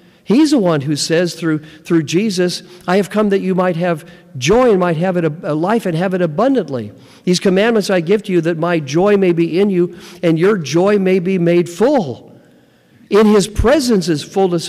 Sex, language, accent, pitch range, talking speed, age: male, English, American, 145-195 Hz, 215 wpm, 50-69